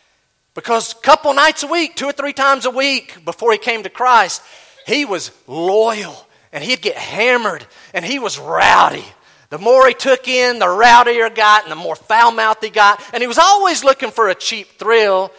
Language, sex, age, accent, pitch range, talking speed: English, male, 40-59, American, 200-285 Hz, 205 wpm